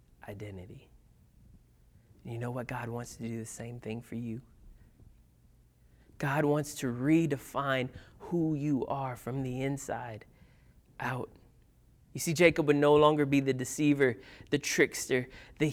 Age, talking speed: 30-49, 135 wpm